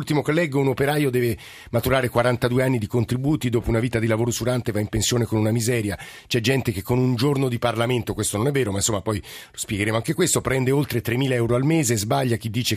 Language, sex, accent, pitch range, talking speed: Italian, male, native, 105-135 Hz, 235 wpm